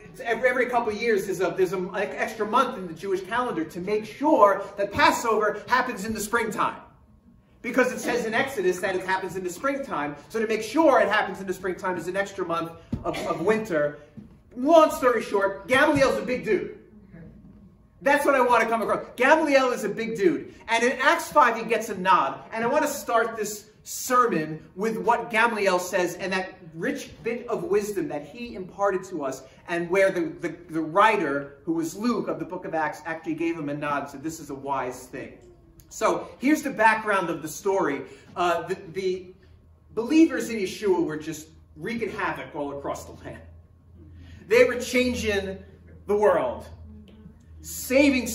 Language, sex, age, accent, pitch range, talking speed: English, male, 30-49, American, 175-240 Hz, 190 wpm